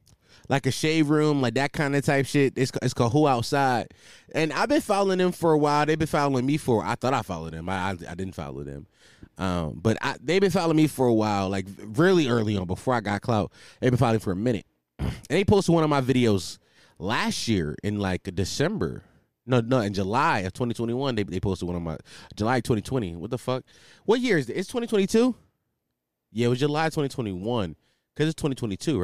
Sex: male